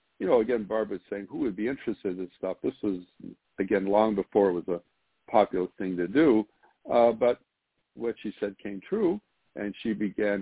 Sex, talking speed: male, 195 wpm